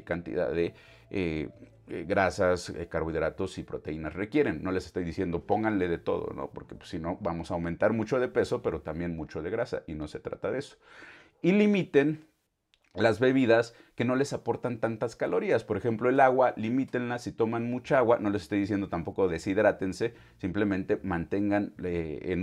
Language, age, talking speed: Spanish, 40-59, 175 wpm